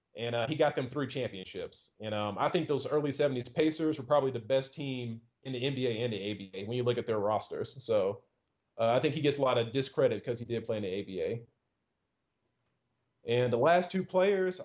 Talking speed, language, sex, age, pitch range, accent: 220 wpm, English, male, 30-49, 120-150 Hz, American